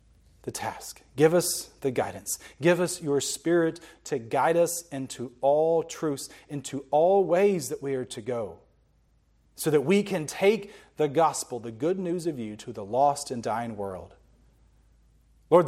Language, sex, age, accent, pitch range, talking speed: English, male, 40-59, American, 145-210 Hz, 165 wpm